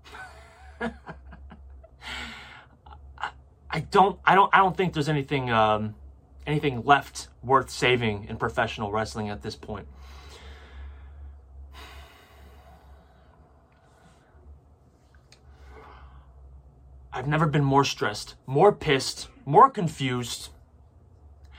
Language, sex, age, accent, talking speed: English, male, 30-49, American, 80 wpm